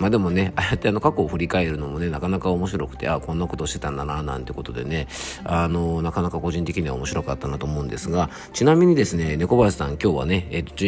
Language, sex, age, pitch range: Japanese, male, 40-59, 75-100 Hz